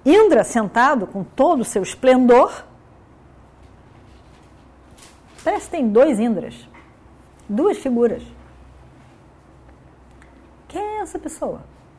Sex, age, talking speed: female, 50-69, 90 wpm